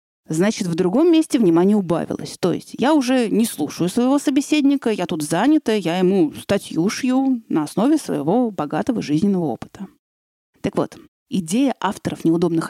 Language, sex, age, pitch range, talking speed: Russian, female, 30-49, 170-250 Hz, 150 wpm